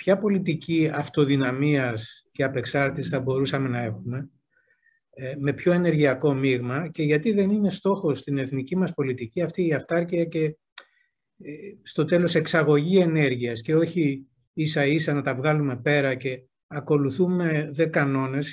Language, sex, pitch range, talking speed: Greek, male, 135-185 Hz, 135 wpm